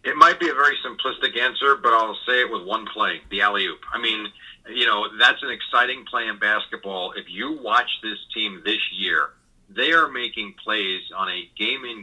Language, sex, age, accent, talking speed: English, male, 40-59, American, 200 wpm